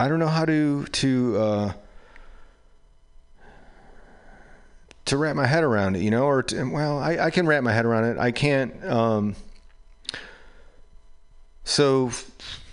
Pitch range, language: 95-125 Hz, English